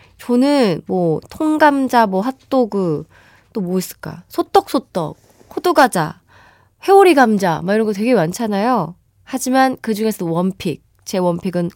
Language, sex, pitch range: Korean, female, 190-290 Hz